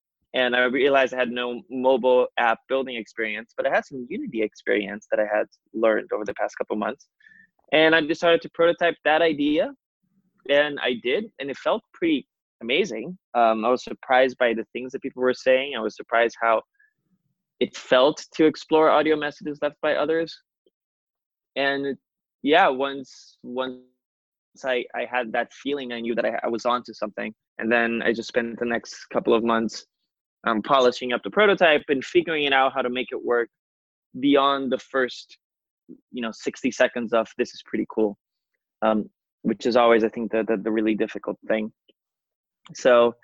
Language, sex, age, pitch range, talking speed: English, male, 20-39, 115-150 Hz, 180 wpm